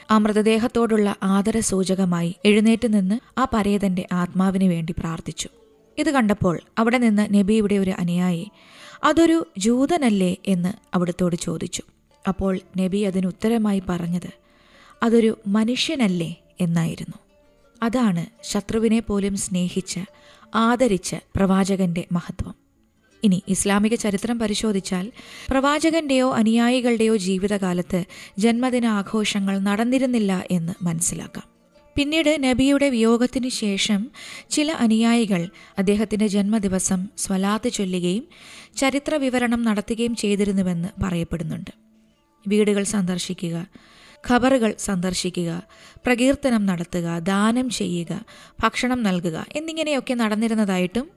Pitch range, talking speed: 185-235 Hz, 90 wpm